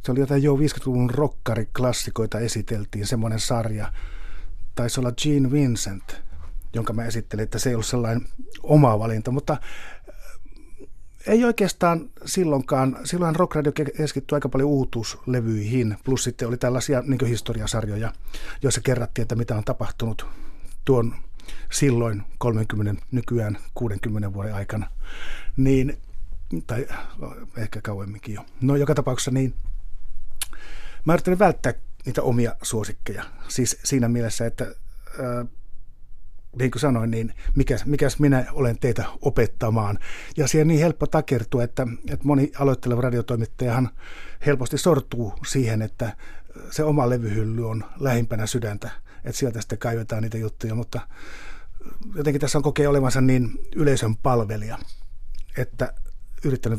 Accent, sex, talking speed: native, male, 125 wpm